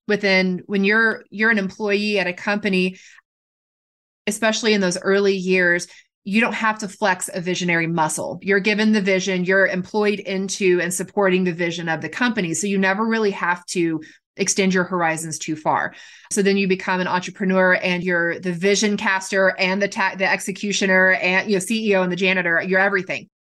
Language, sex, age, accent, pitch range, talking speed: English, female, 20-39, American, 175-200 Hz, 185 wpm